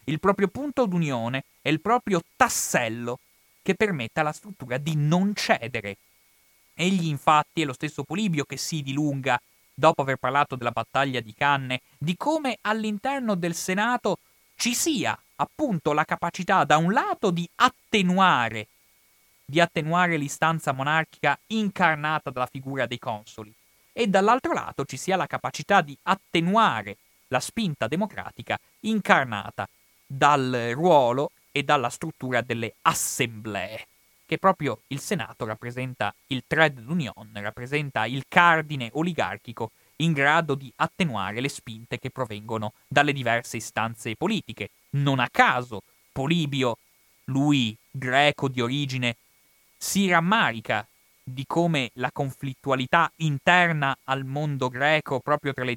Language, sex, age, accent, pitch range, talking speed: Italian, male, 30-49, native, 125-175 Hz, 130 wpm